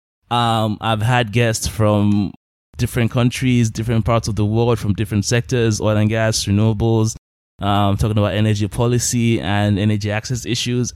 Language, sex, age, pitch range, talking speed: English, male, 20-39, 100-120 Hz, 155 wpm